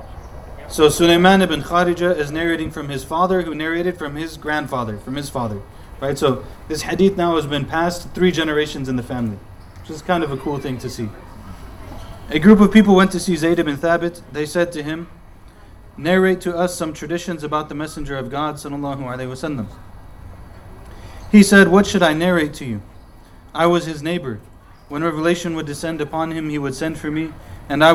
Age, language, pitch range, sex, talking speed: 30-49, English, 115-165 Hz, male, 190 wpm